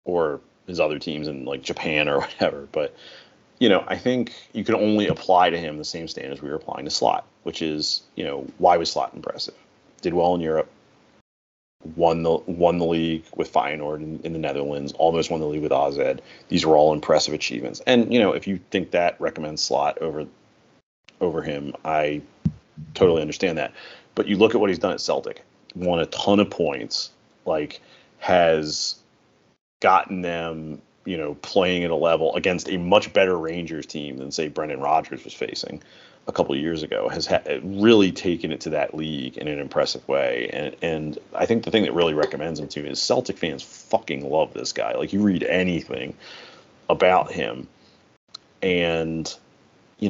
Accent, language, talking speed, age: American, English, 190 wpm, 30-49